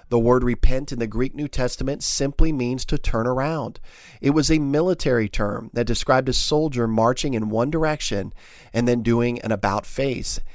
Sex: male